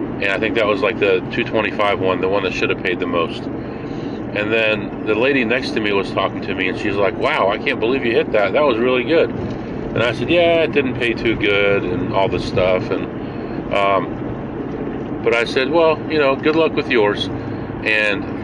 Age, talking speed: 40-59, 220 wpm